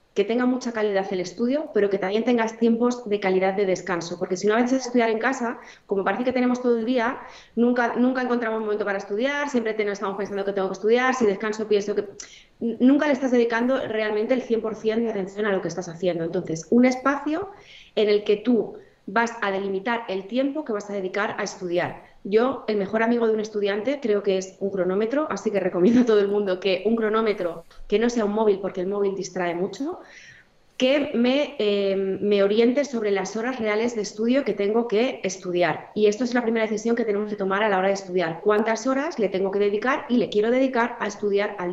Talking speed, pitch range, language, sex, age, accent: 225 wpm, 190-240 Hz, Spanish, female, 20-39, Spanish